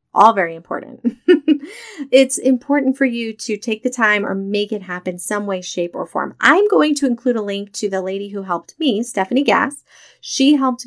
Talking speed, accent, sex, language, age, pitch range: 200 wpm, American, female, English, 30-49, 195-250 Hz